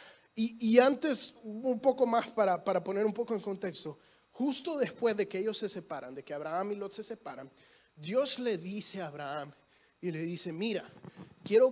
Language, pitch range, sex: Spanish, 185-240 Hz, male